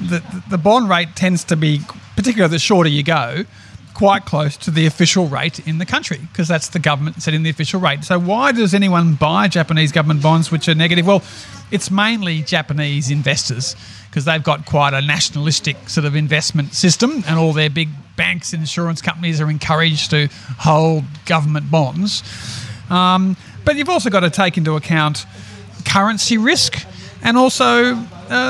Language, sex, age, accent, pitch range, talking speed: English, male, 40-59, Australian, 155-200 Hz, 175 wpm